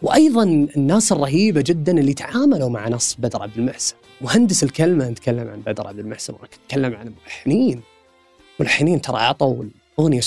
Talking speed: 150 wpm